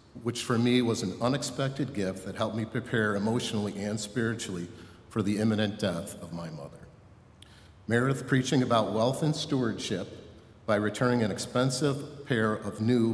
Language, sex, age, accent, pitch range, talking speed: English, male, 50-69, American, 100-120 Hz, 155 wpm